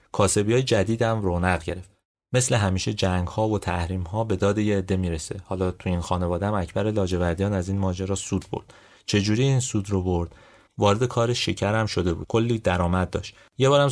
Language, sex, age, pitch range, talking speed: Persian, male, 30-49, 90-115 Hz, 190 wpm